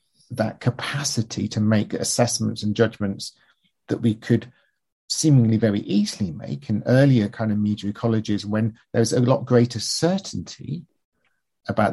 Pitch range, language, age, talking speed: 105-135 Hz, English, 50-69, 135 wpm